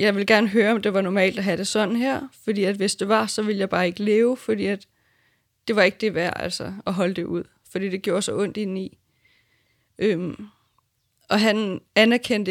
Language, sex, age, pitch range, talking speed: Danish, female, 20-39, 170-210 Hz, 215 wpm